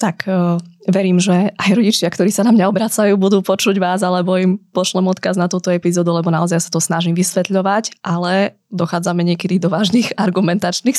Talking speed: 175 wpm